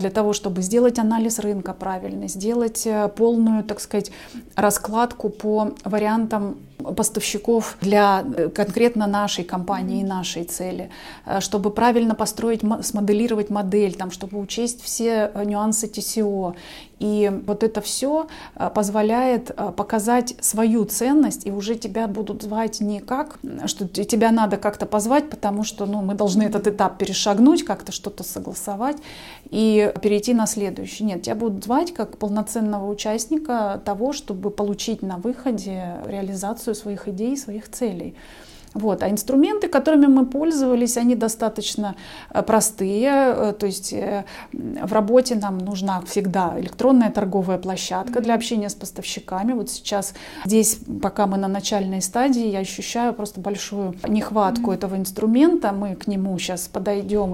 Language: Russian